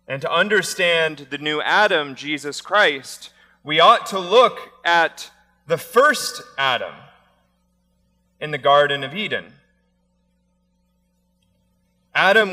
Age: 30-49